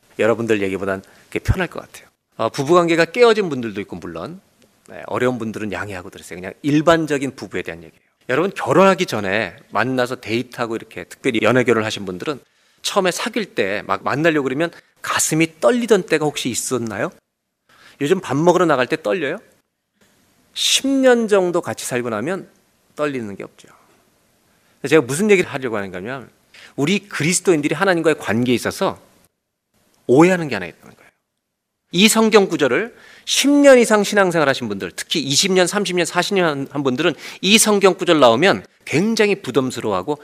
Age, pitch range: 40-59, 120-185 Hz